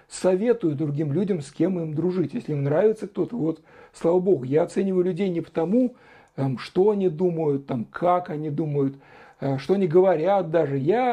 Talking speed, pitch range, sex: 160 wpm, 155-195 Hz, male